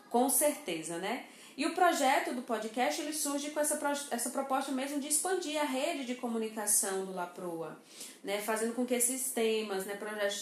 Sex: female